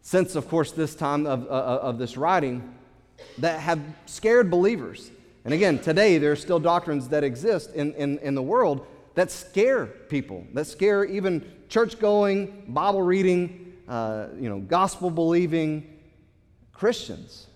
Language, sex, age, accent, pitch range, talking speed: English, male, 40-59, American, 130-175 Hz, 140 wpm